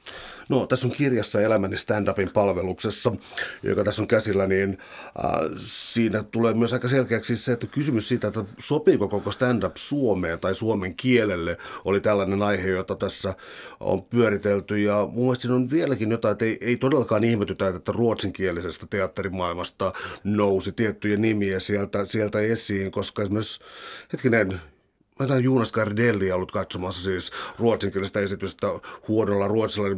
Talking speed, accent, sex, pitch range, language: 130 wpm, native, male, 100-120 Hz, Finnish